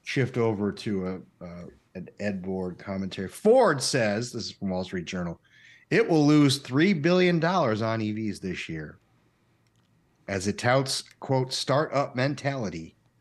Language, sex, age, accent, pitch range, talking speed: English, male, 40-59, American, 95-135 Hz, 145 wpm